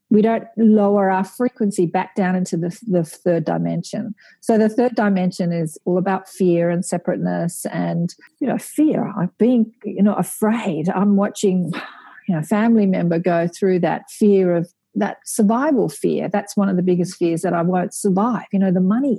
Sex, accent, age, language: female, Australian, 40-59, English